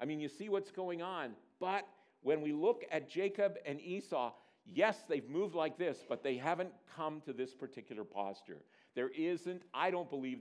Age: 50-69